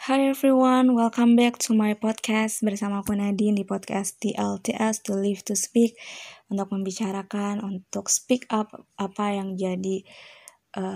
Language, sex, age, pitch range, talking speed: Indonesian, female, 20-39, 195-220 Hz, 140 wpm